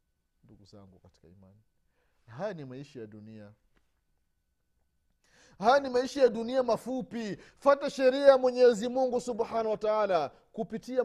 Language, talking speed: Swahili, 130 wpm